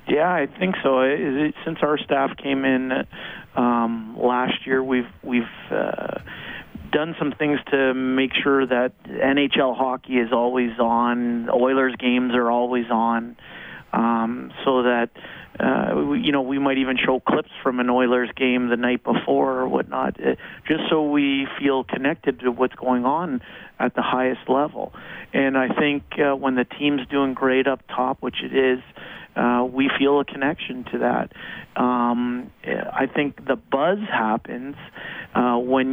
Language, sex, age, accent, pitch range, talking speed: English, male, 40-59, American, 125-135 Hz, 160 wpm